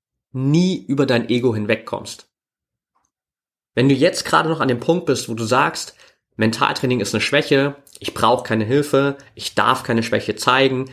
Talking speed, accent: 165 wpm, German